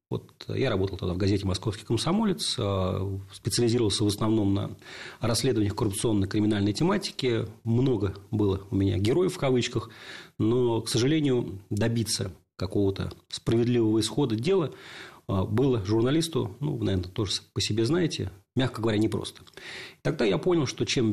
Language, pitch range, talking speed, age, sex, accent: Russian, 100-125 Hz, 130 wpm, 40-59, male, native